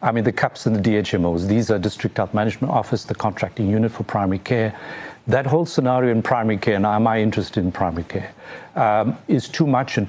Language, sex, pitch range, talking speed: English, male, 110-150 Hz, 220 wpm